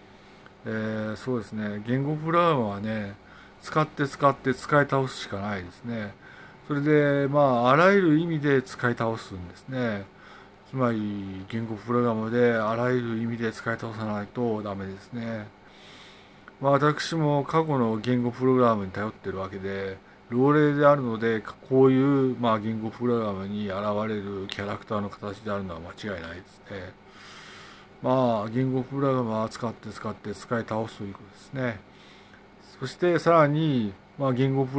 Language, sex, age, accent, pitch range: Japanese, male, 50-69, native, 105-130 Hz